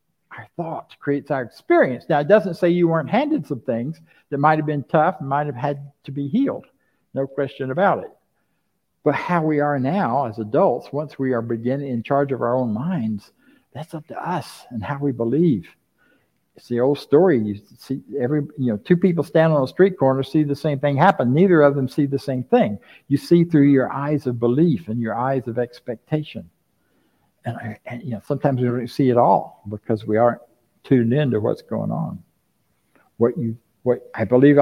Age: 60-79